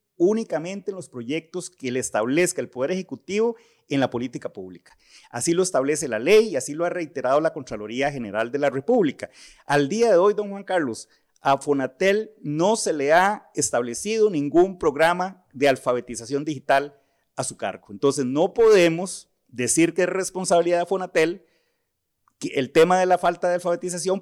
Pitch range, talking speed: 140-200 Hz, 170 wpm